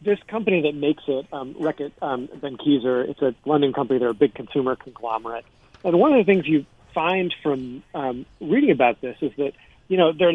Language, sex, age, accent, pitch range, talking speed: English, male, 40-59, American, 130-155 Hz, 210 wpm